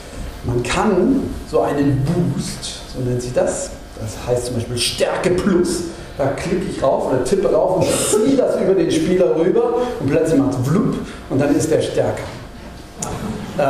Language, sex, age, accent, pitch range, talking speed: German, male, 40-59, German, 125-175 Hz, 170 wpm